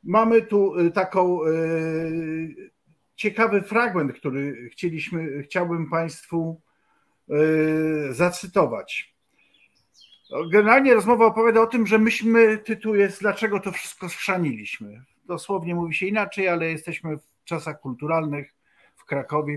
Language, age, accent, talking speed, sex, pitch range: Polish, 50-69, native, 105 wpm, male, 150-200 Hz